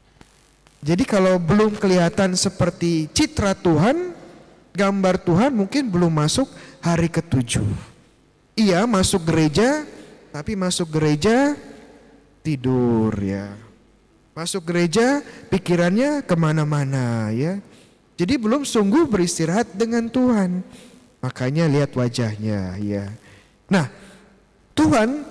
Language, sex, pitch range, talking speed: Indonesian, male, 155-205 Hz, 90 wpm